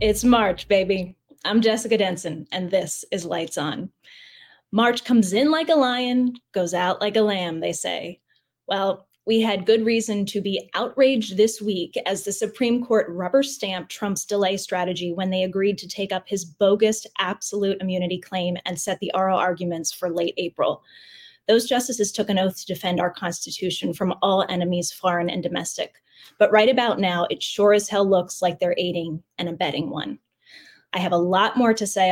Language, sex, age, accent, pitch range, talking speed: English, female, 10-29, American, 180-225 Hz, 185 wpm